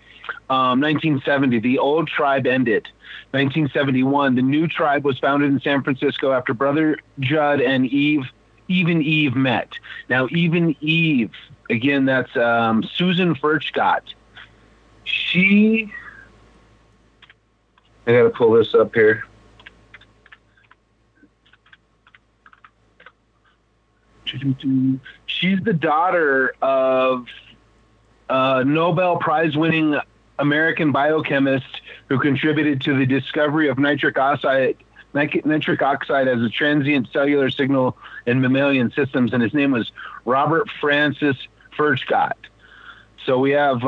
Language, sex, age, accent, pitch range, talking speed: English, male, 40-59, American, 130-155 Hz, 105 wpm